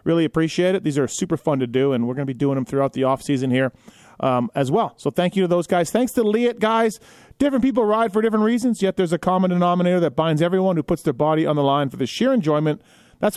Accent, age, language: American, 30-49, English